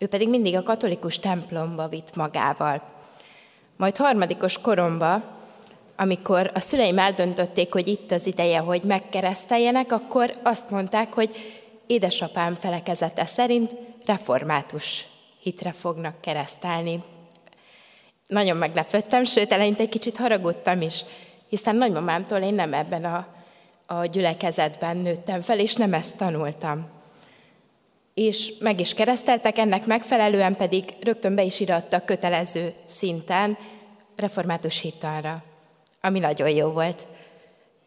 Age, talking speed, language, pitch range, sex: 20-39, 115 wpm, Hungarian, 170-210 Hz, female